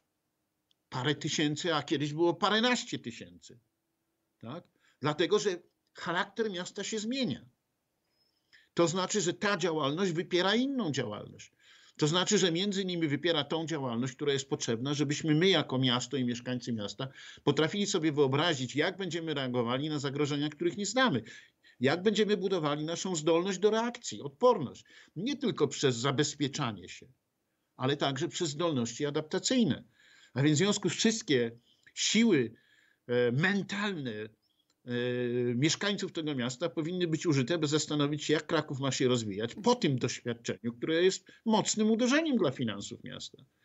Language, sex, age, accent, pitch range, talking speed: Polish, male, 50-69, native, 135-195 Hz, 140 wpm